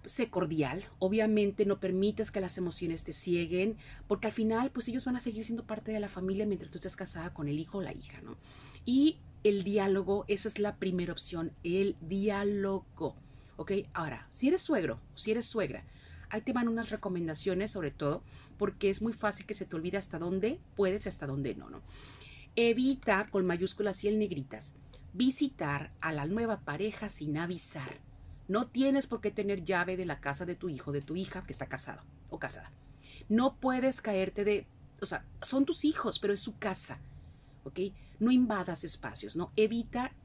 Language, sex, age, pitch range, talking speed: Spanish, female, 40-59, 175-225 Hz, 190 wpm